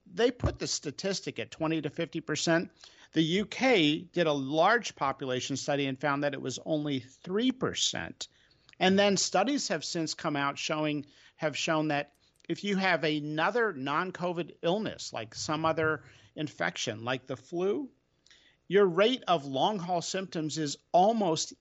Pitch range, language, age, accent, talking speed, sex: 135-185 Hz, English, 50-69, American, 145 wpm, male